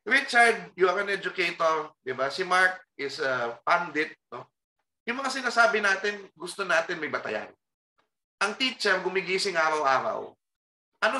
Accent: native